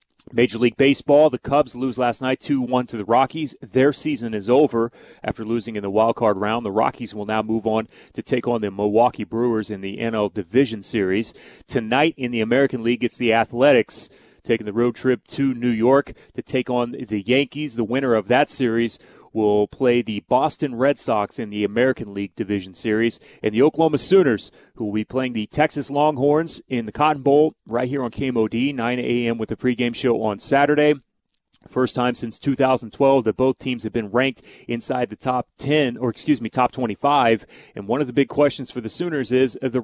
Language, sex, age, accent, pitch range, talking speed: English, male, 30-49, American, 115-140 Hz, 200 wpm